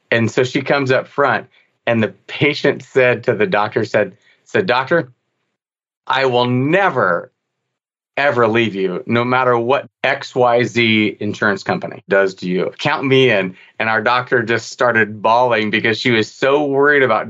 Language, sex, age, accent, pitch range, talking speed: English, male, 30-49, American, 105-130 Hz, 160 wpm